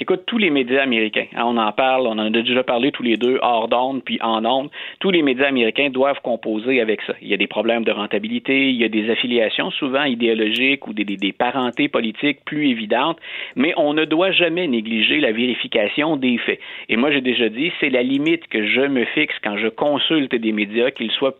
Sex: male